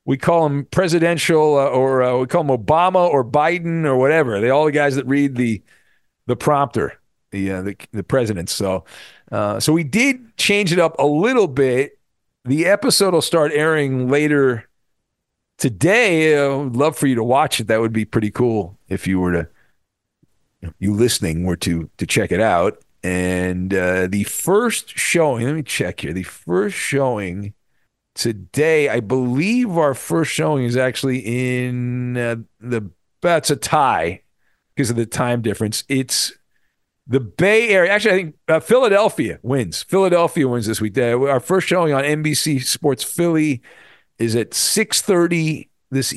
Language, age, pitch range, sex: English, 50-69, 110-155 Hz, male